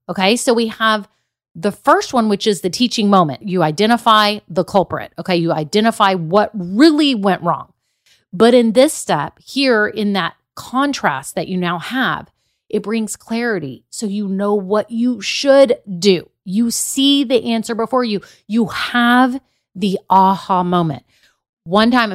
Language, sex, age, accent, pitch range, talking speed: English, female, 30-49, American, 180-230 Hz, 155 wpm